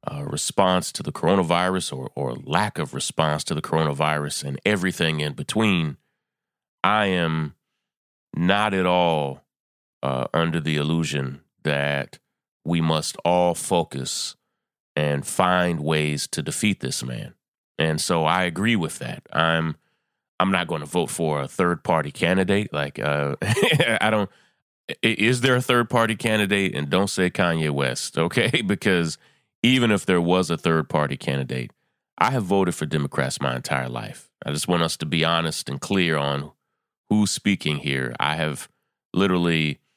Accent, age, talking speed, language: American, 30-49, 155 wpm, English